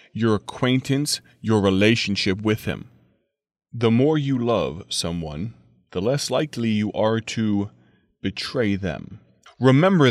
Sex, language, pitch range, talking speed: male, English, 105-130 Hz, 120 wpm